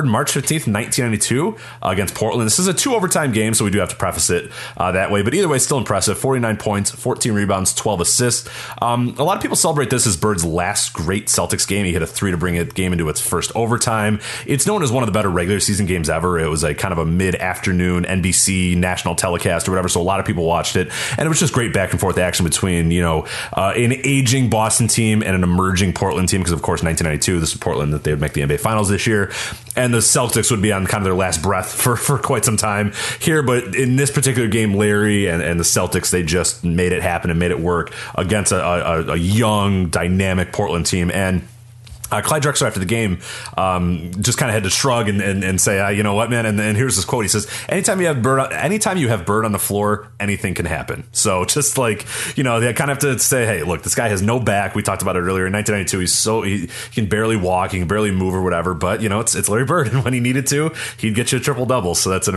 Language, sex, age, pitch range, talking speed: English, male, 30-49, 90-120 Hz, 260 wpm